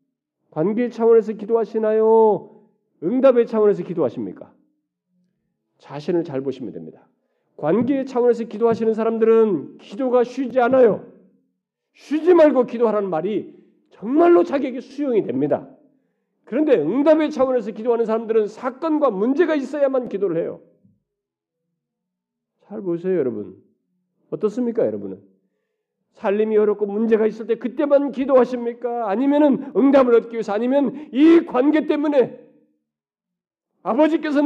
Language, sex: Korean, male